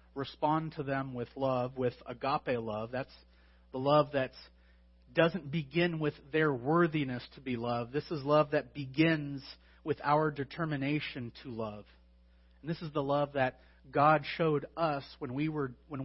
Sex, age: male, 40-59